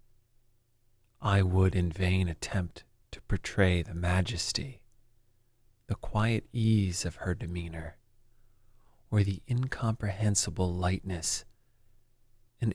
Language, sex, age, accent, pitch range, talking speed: English, male, 30-49, American, 95-115 Hz, 95 wpm